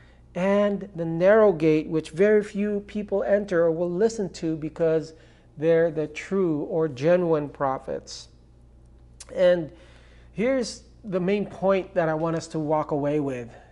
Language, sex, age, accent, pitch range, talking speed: English, male, 40-59, American, 150-210 Hz, 145 wpm